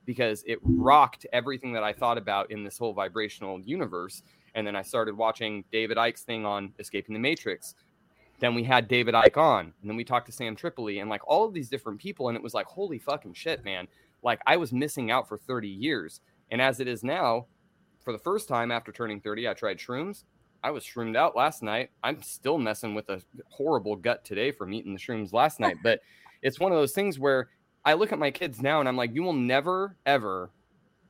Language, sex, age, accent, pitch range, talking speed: English, male, 20-39, American, 110-145 Hz, 225 wpm